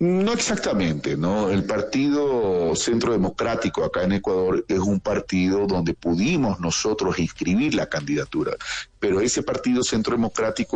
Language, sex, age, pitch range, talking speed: Spanish, male, 40-59, 95-135 Hz, 135 wpm